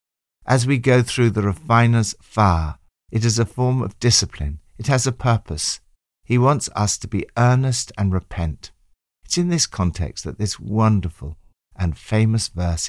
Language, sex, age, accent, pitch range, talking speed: English, male, 60-79, British, 85-115 Hz, 165 wpm